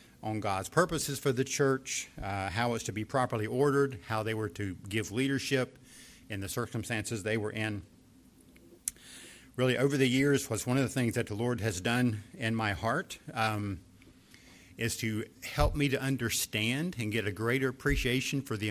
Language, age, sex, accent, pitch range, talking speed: English, 50-69, male, American, 105-130 Hz, 180 wpm